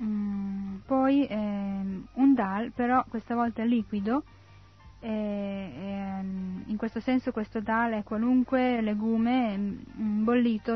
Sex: female